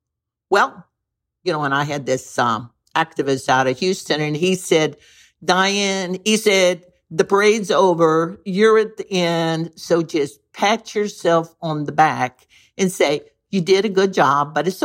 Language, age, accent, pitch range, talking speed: English, 60-79, American, 145-190 Hz, 165 wpm